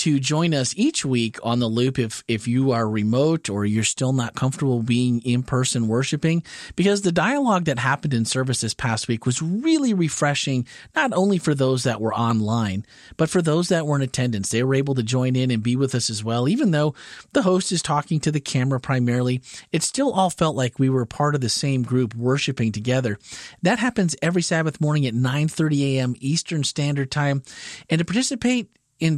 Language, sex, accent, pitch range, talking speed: English, male, American, 125-165 Hz, 205 wpm